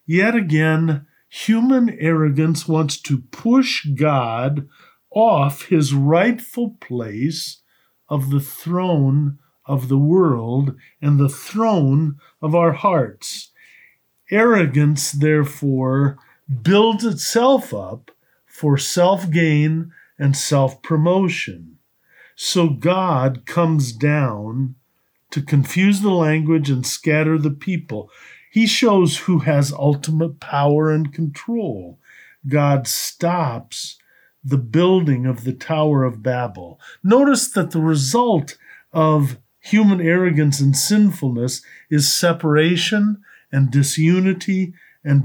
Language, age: English, 50-69